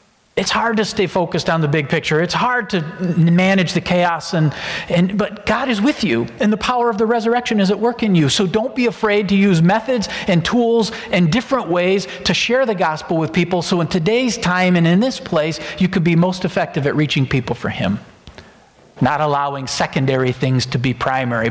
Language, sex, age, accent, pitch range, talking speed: English, male, 50-69, American, 135-190 Hz, 210 wpm